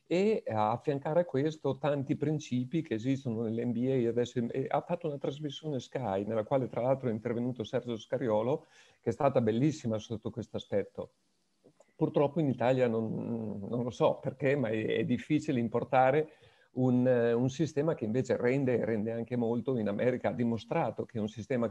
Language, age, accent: Italian, 50-69, native